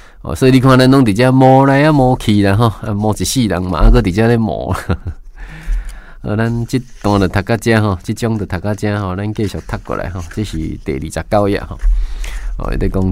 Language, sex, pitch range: Chinese, male, 90-120 Hz